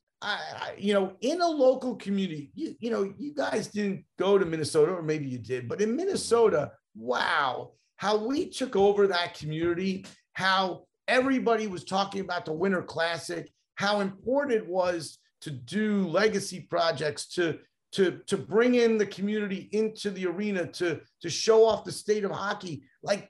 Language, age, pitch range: English, 40-59, 160-210 Hz